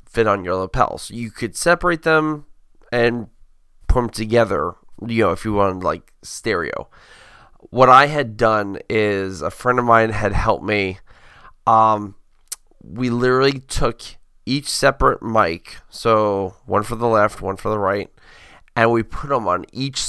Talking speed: 160 wpm